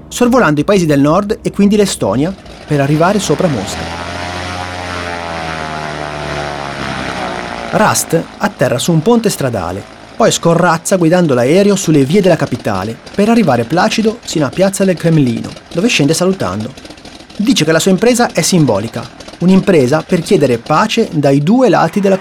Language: Italian